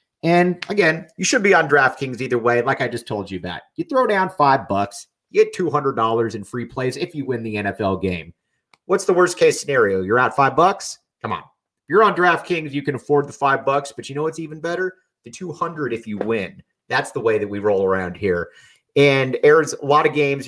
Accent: American